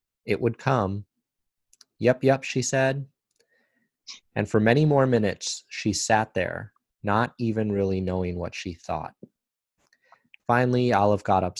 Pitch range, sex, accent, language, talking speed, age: 90-110 Hz, male, American, English, 135 wpm, 30-49